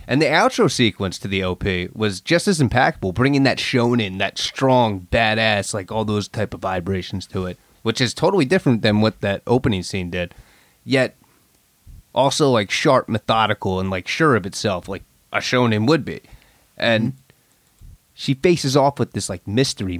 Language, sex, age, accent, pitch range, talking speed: English, male, 30-49, American, 95-120 Hz, 175 wpm